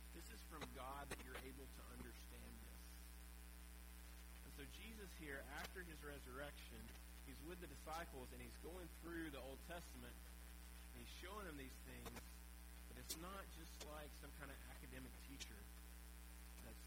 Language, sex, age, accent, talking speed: English, male, 30-49, American, 145 wpm